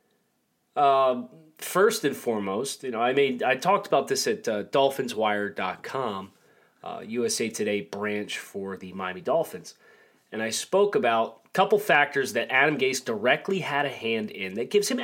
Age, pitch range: 30-49, 115-170 Hz